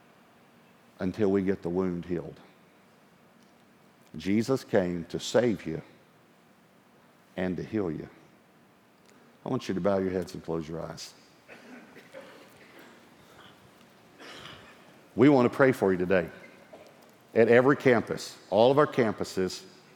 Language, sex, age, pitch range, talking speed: English, male, 50-69, 105-145 Hz, 120 wpm